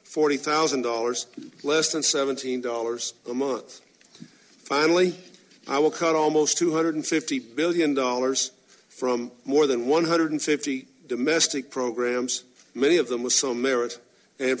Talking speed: 105 wpm